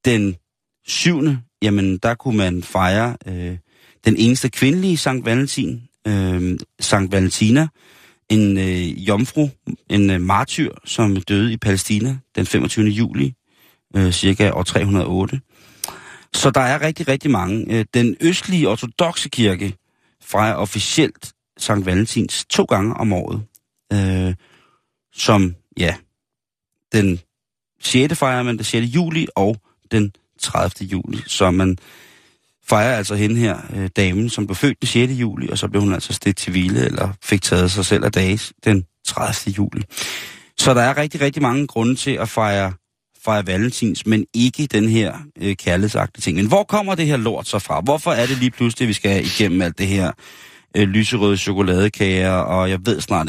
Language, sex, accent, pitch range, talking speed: Danish, male, native, 95-120 Hz, 160 wpm